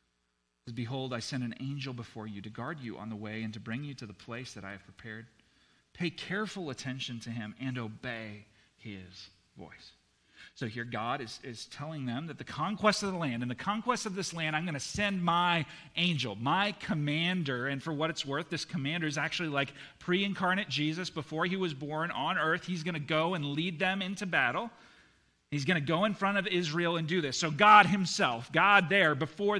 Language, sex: English, male